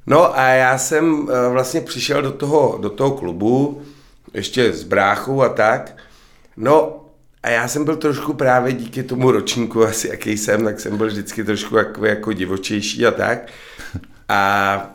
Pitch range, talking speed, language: 110-135 Hz, 160 wpm, Czech